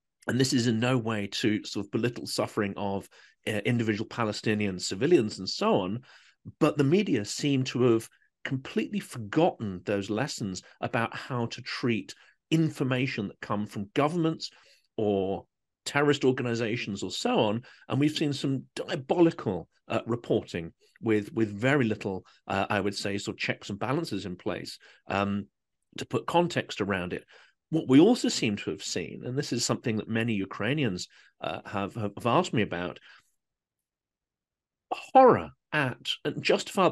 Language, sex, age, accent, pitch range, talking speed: English, male, 40-59, British, 100-140 Hz, 155 wpm